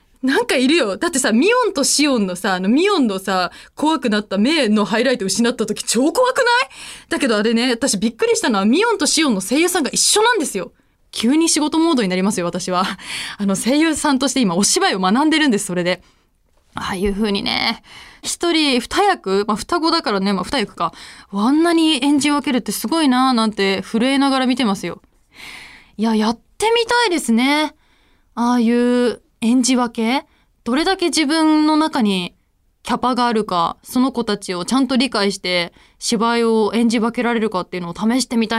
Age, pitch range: 20-39, 205-280 Hz